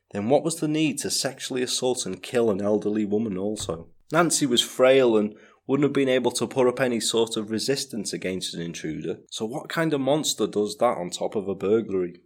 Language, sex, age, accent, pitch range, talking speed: English, male, 30-49, British, 95-135 Hz, 215 wpm